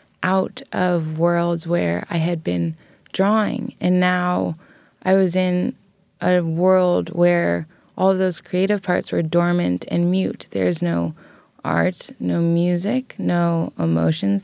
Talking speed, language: 130 wpm, English